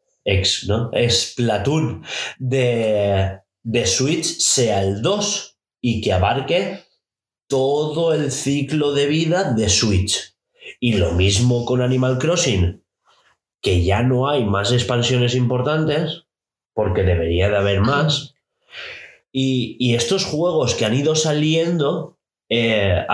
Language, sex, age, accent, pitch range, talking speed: Spanish, male, 30-49, Spanish, 100-140 Hz, 120 wpm